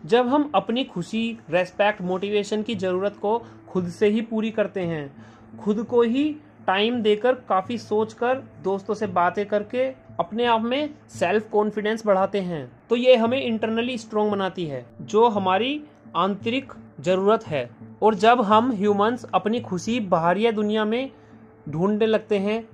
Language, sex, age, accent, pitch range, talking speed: Hindi, male, 30-49, native, 185-230 Hz, 155 wpm